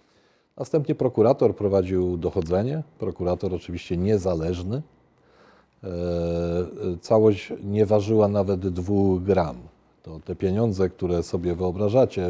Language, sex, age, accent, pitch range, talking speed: Polish, male, 40-59, native, 90-125 Hz, 100 wpm